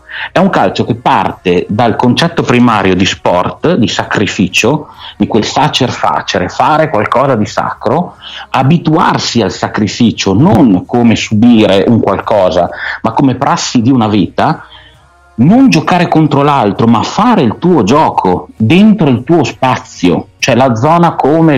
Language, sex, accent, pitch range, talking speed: Italian, male, native, 95-135 Hz, 140 wpm